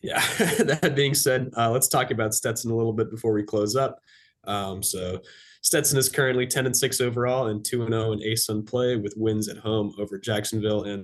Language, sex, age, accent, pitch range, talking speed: English, male, 20-39, American, 105-125 Hz, 210 wpm